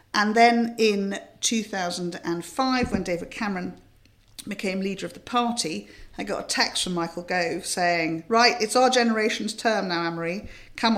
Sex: female